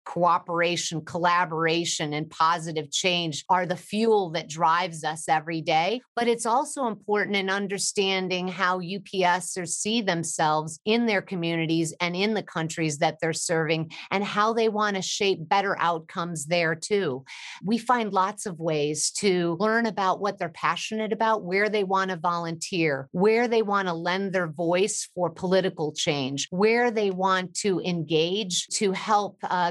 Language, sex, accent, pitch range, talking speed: English, female, American, 170-205 Hz, 160 wpm